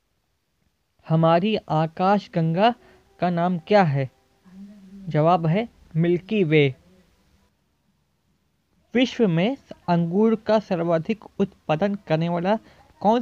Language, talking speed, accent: Hindi, 85 wpm, native